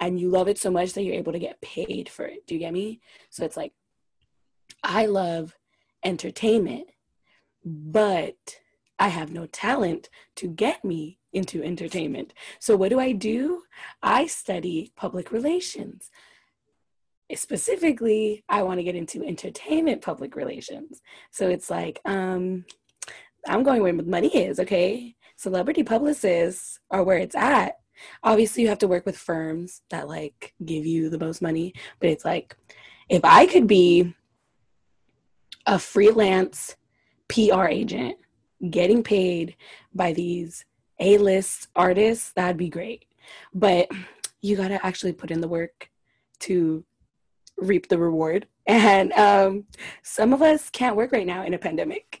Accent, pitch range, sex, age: American, 175-220 Hz, female, 20-39